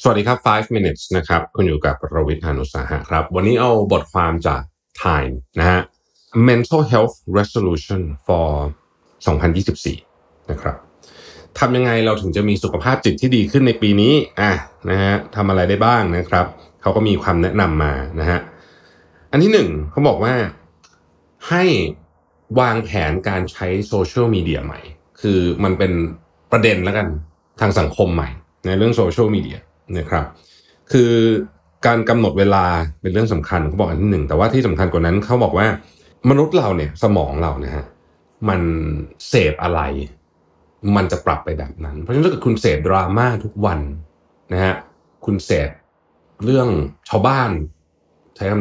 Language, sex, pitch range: Thai, male, 80-110 Hz